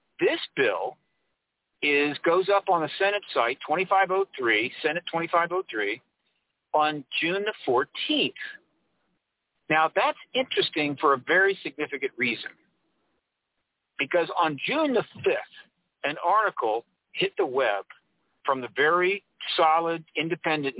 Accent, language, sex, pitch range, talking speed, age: American, English, male, 145-200 Hz, 115 wpm, 50-69